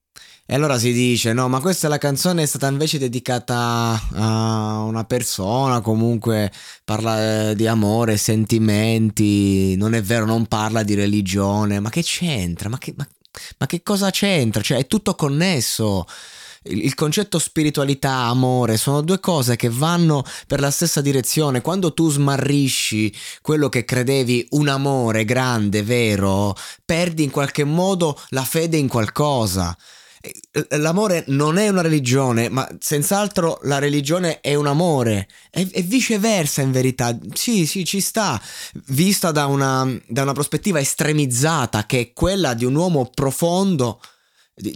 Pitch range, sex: 115-155 Hz, male